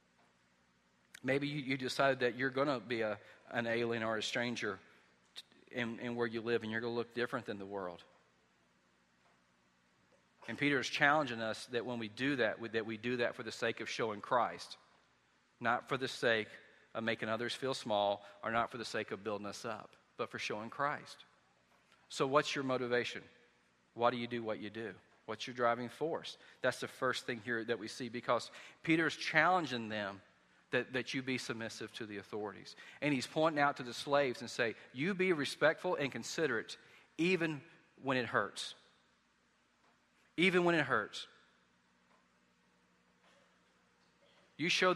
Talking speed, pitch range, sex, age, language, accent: 180 wpm, 100-130 Hz, male, 40-59, English, American